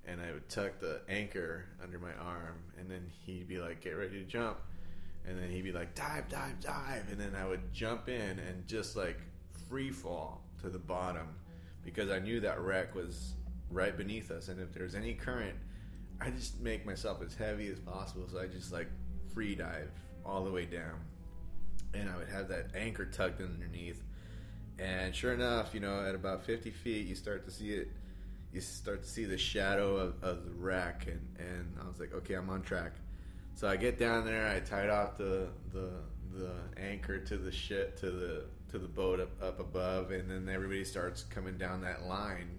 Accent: American